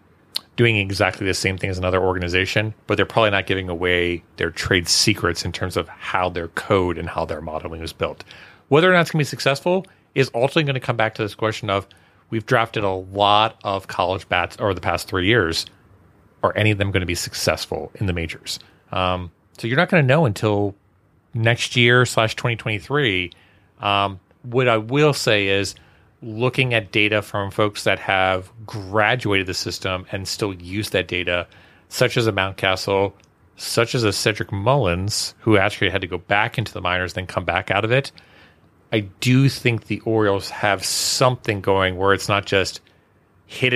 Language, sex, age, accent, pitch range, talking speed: English, male, 30-49, American, 95-115 Hz, 190 wpm